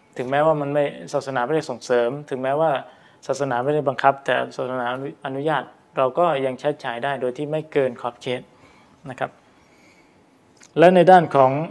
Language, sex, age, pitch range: Thai, male, 20-39, 125-150 Hz